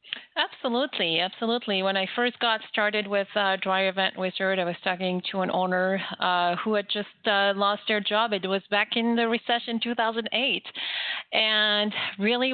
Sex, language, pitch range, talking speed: female, English, 195-225 Hz, 175 wpm